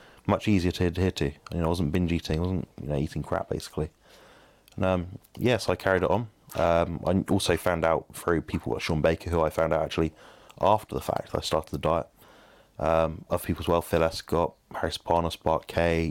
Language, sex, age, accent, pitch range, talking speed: English, male, 20-39, British, 80-95 Hz, 235 wpm